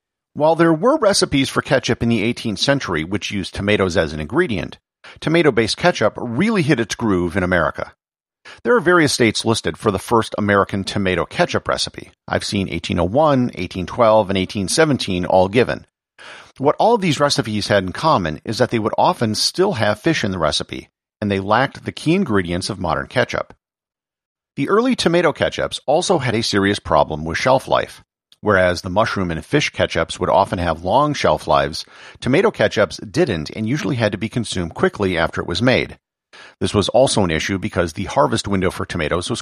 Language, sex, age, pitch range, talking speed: English, male, 50-69, 95-140 Hz, 185 wpm